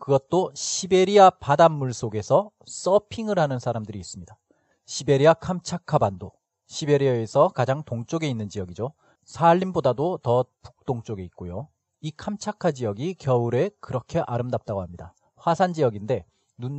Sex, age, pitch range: male, 40-59, 115-165 Hz